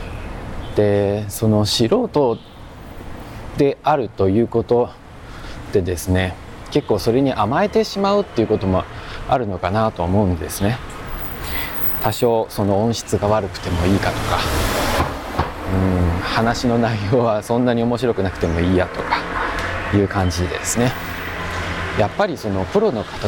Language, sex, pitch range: Japanese, male, 90-125 Hz